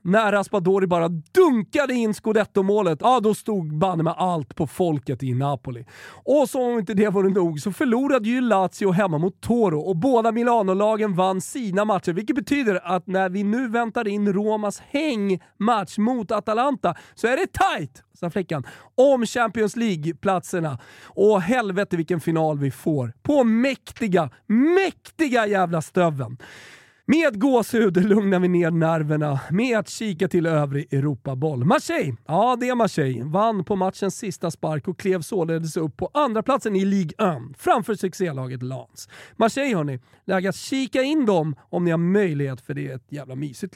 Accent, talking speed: native, 165 wpm